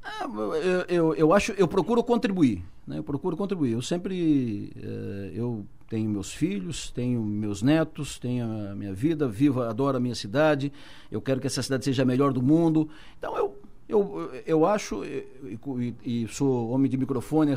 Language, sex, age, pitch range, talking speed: Portuguese, male, 60-79, 130-175 Hz, 180 wpm